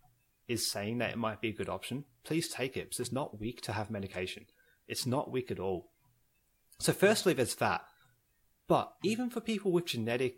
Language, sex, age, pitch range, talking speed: English, male, 30-49, 105-150 Hz, 195 wpm